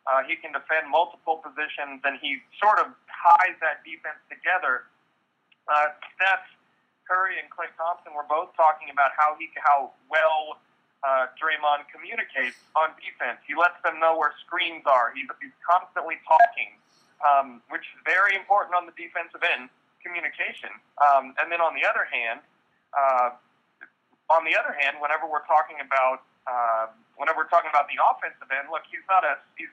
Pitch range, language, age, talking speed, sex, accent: 145-170 Hz, English, 30-49, 170 wpm, male, American